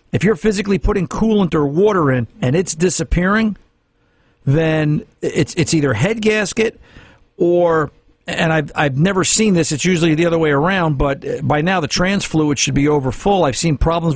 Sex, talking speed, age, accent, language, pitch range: male, 180 wpm, 50-69, American, English, 145-175 Hz